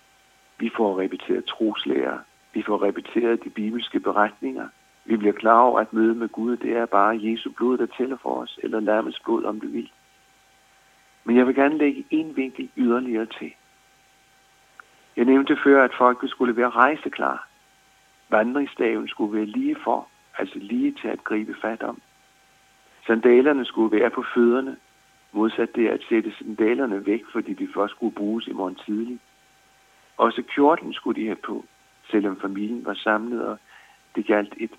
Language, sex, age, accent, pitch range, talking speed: Danish, male, 60-79, native, 110-140 Hz, 165 wpm